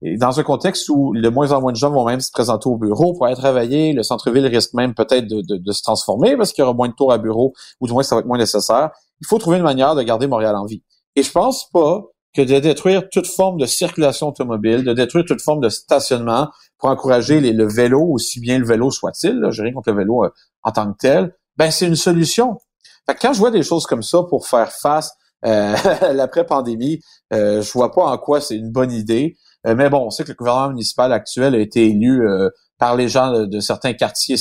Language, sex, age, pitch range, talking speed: French, male, 40-59, 115-150 Hz, 255 wpm